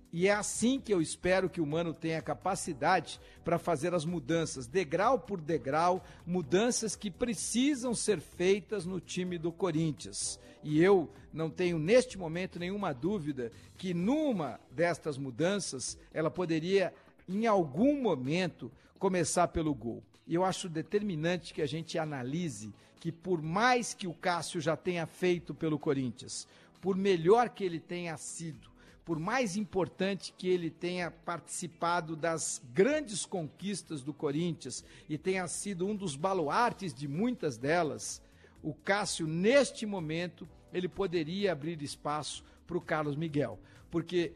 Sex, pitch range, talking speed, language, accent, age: male, 155-190 Hz, 145 wpm, Portuguese, Brazilian, 60-79